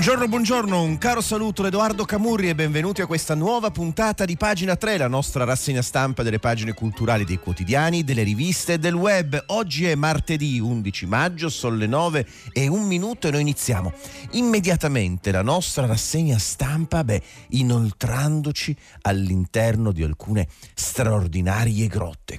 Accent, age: native, 40-59